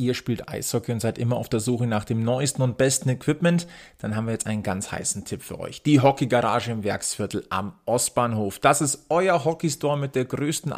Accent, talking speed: German, 210 wpm